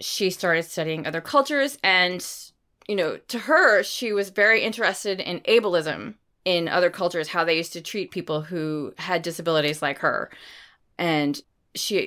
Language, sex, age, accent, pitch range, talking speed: English, female, 20-39, American, 170-235 Hz, 160 wpm